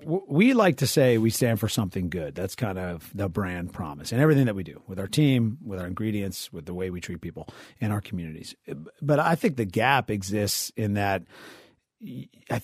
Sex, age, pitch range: male, 40-59, 95-125 Hz